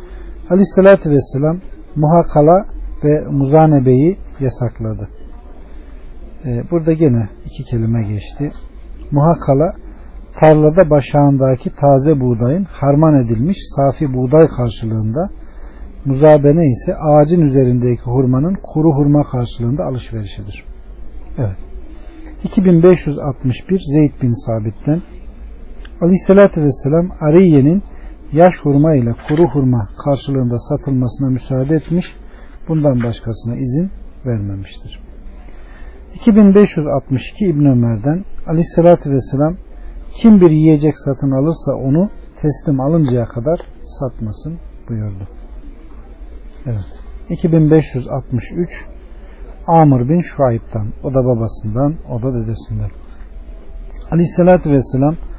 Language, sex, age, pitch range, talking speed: Turkish, male, 50-69, 120-160 Hz, 90 wpm